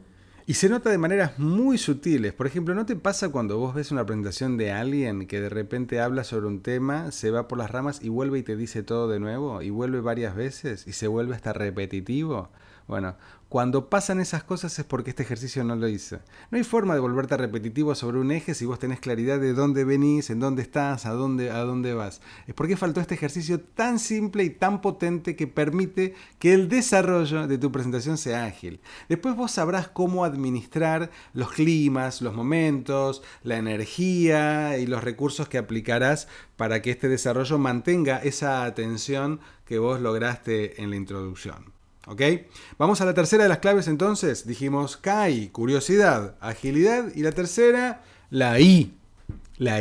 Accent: Argentinian